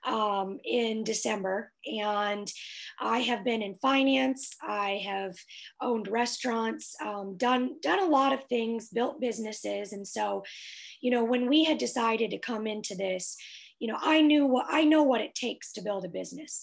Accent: American